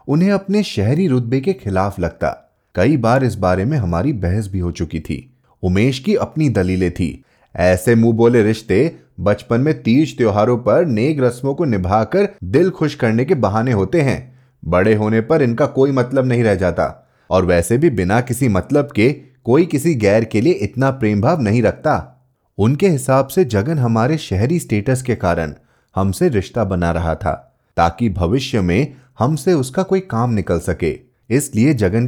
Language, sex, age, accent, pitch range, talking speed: Hindi, male, 30-49, native, 95-150 Hz, 150 wpm